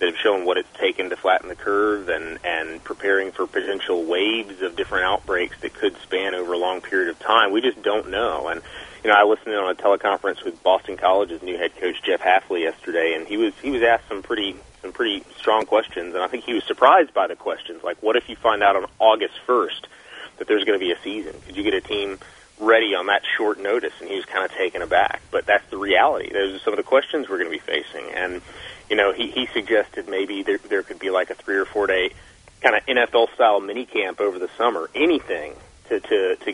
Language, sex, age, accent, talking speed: English, male, 30-49, American, 240 wpm